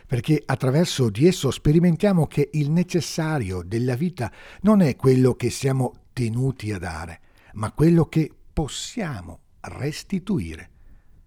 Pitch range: 100-155 Hz